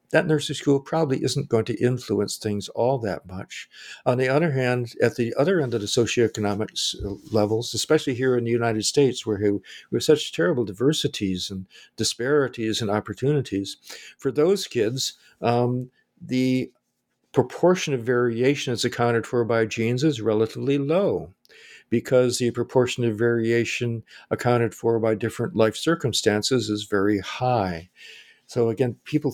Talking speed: 150 wpm